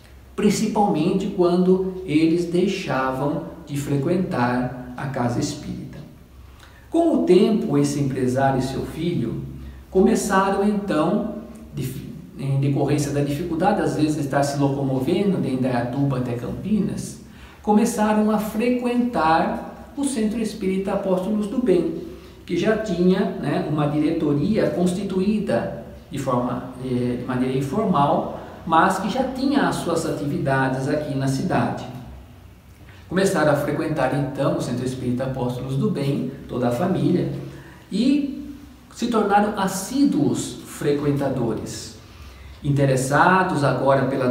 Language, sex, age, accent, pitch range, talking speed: Portuguese, male, 50-69, Brazilian, 135-190 Hz, 115 wpm